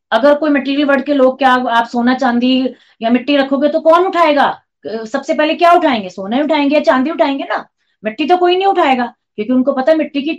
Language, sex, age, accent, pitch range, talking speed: Hindi, female, 30-49, native, 220-290 Hz, 210 wpm